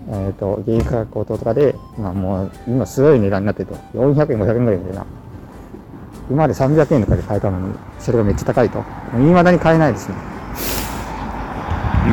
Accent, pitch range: native, 100-155 Hz